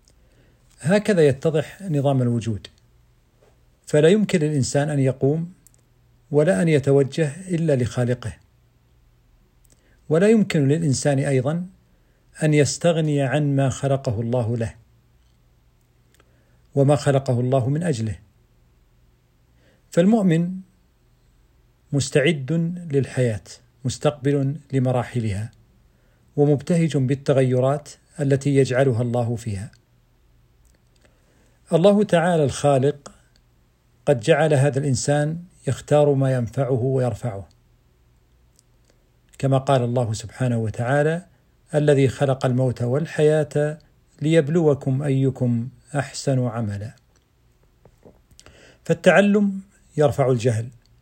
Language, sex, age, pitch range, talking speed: Arabic, male, 50-69, 120-150 Hz, 80 wpm